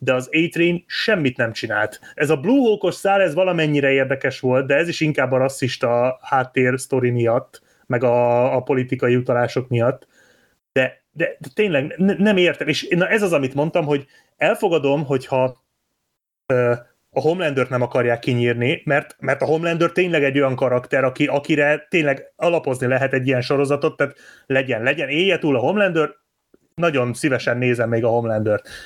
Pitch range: 130-170 Hz